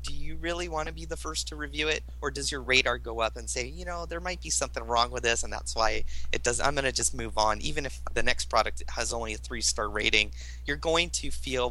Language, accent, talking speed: English, American, 265 wpm